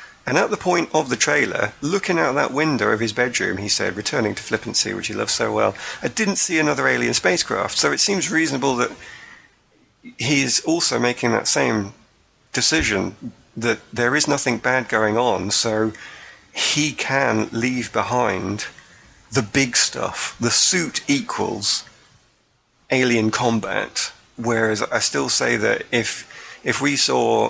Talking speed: 155 wpm